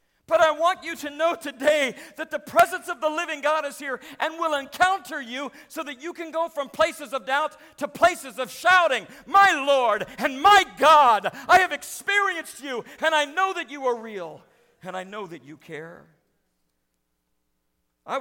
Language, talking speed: English, 185 wpm